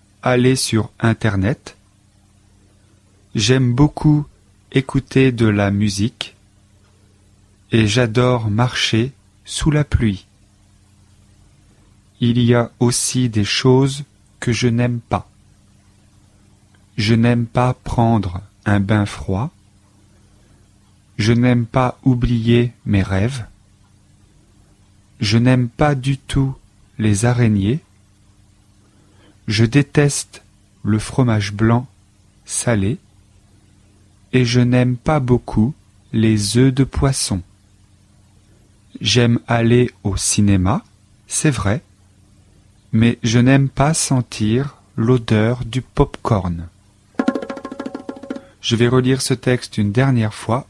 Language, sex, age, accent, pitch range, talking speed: French, male, 30-49, French, 100-125 Hz, 95 wpm